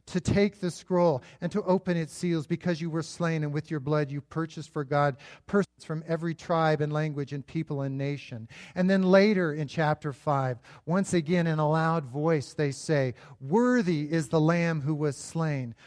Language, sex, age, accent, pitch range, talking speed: English, male, 40-59, American, 145-180 Hz, 195 wpm